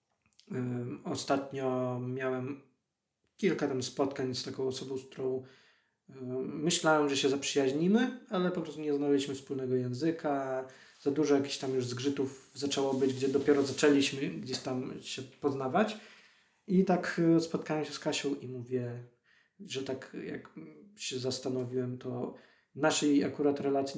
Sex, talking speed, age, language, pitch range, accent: male, 140 wpm, 20-39, Polish, 130-160 Hz, native